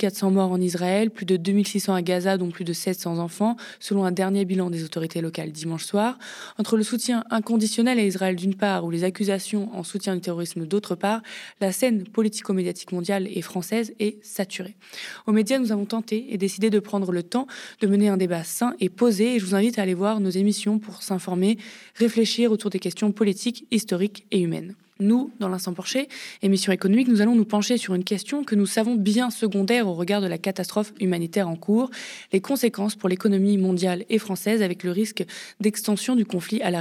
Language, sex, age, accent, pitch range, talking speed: French, female, 20-39, French, 185-220 Hz, 205 wpm